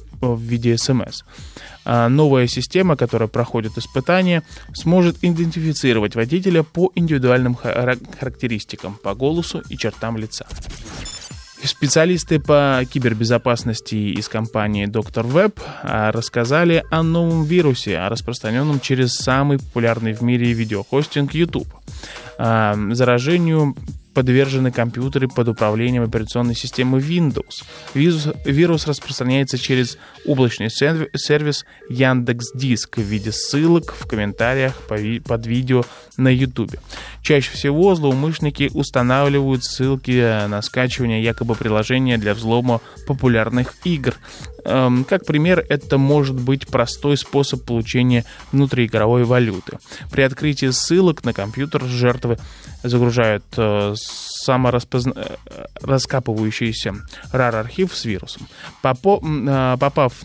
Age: 20-39